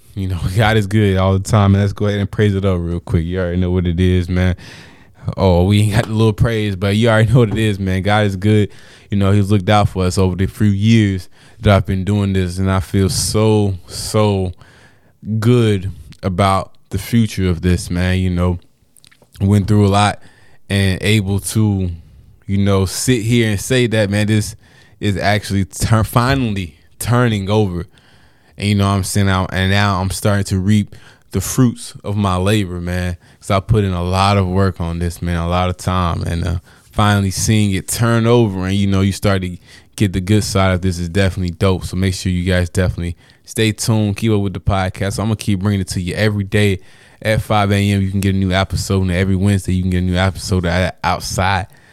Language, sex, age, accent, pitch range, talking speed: English, male, 20-39, American, 95-105 Hz, 215 wpm